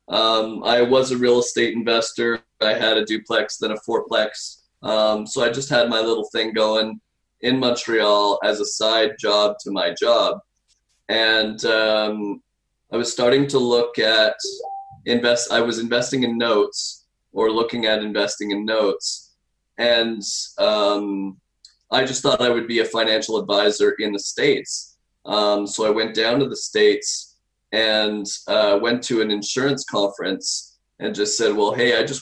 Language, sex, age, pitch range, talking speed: English, male, 20-39, 110-125 Hz, 165 wpm